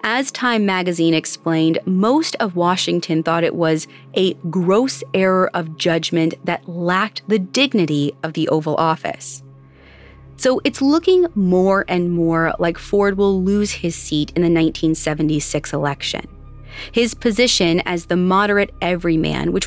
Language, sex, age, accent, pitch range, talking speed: English, female, 30-49, American, 160-210 Hz, 140 wpm